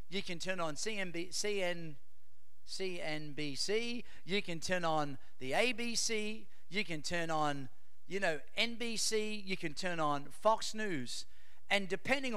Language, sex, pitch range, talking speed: English, male, 170-225 Hz, 125 wpm